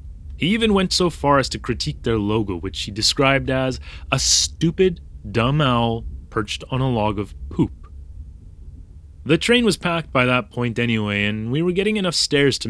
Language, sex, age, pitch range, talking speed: English, male, 30-49, 110-165 Hz, 185 wpm